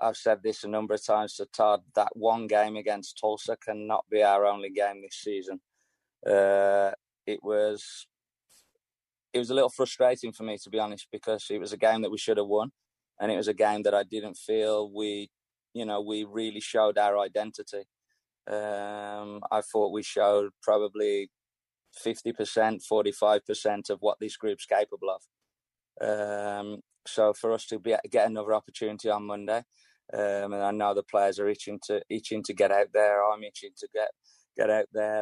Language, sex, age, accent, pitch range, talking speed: English, male, 20-39, British, 100-110 Hz, 185 wpm